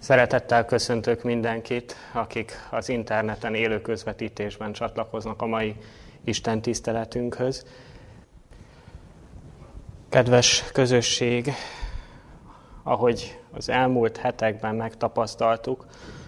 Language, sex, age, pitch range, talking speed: Hungarian, male, 20-39, 105-120 Hz, 75 wpm